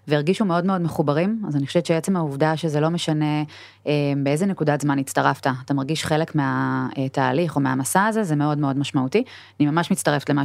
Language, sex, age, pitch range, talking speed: Hebrew, female, 20-39, 155-200 Hz, 190 wpm